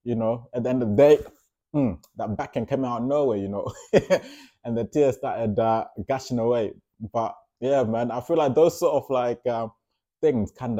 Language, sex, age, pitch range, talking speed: English, male, 20-39, 100-135 Hz, 205 wpm